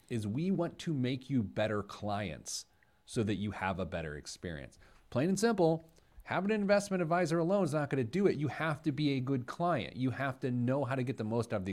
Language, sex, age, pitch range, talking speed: English, male, 30-49, 105-155 Hz, 245 wpm